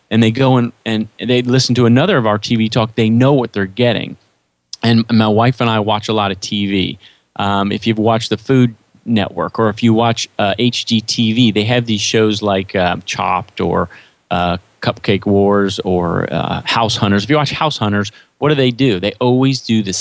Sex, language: male, English